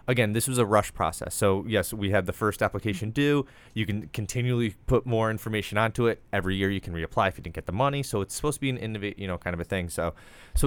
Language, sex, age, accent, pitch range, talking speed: English, male, 20-39, American, 95-115 Hz, 270 wpm